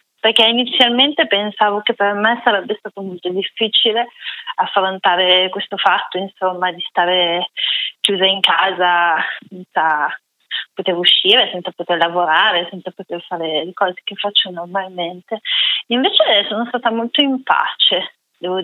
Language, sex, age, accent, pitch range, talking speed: Italian, female, 20-39, native, 185-235 Hz, 130 wpm